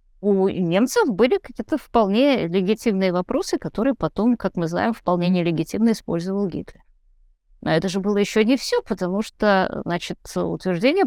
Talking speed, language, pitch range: 145 wpm, Russian, 195-275 Hz